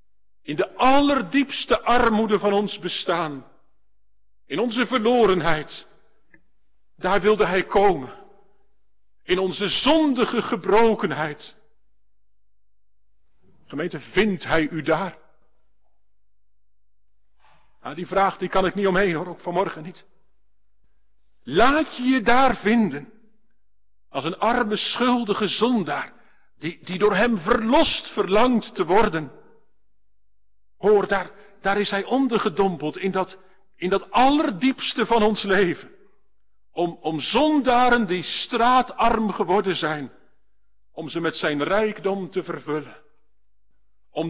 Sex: male